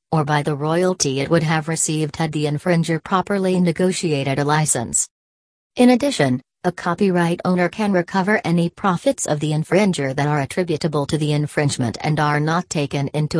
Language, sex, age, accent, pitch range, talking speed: English, female, 40-59, American, 150-180 Hz, 170 wpm